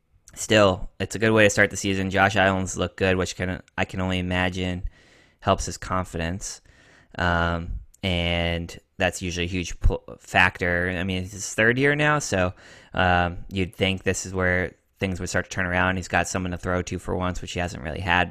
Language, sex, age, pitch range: English, male, 20-39, 85-100 Hz